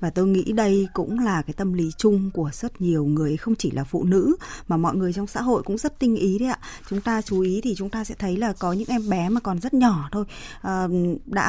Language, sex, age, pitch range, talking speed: Vietnamese, female, 20-39, 165-220 Hz, 265 wpm